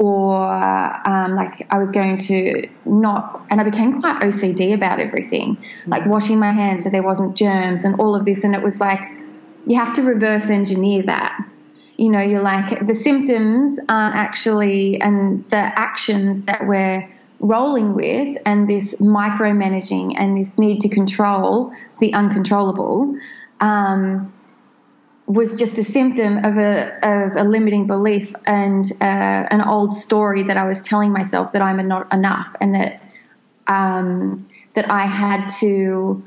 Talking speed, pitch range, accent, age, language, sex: 155 wpm, 195-215 Hz, Australian, 20-39, English, female